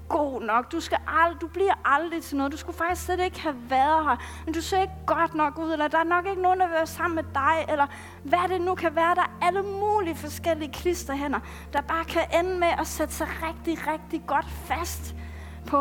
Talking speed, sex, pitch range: 235 wpm, female, 220-340 Hz